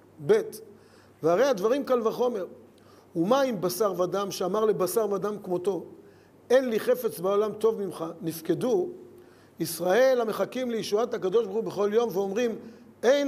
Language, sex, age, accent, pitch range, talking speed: Hebrew, male, 50-69, native, 170-230 Hz, 135 wpm